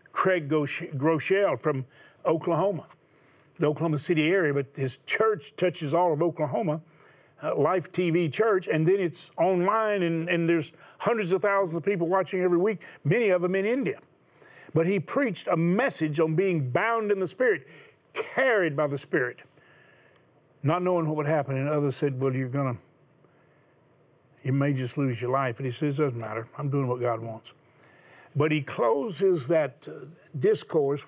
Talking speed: 170 wpm